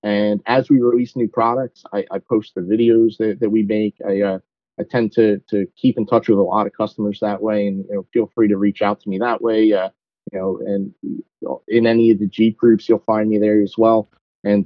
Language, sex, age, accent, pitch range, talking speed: English, male, 40-59, American, 105-135 Hz, 240 wpm